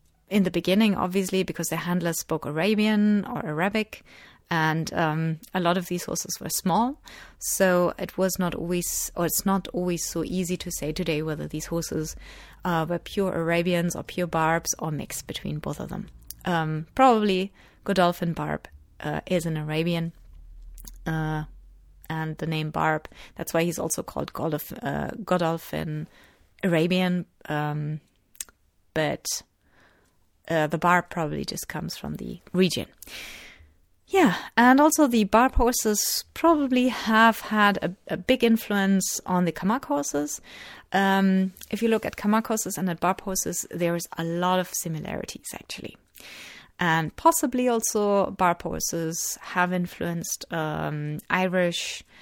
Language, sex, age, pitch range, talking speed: English, female, 30-49, 160-200 Hz, 145 wpm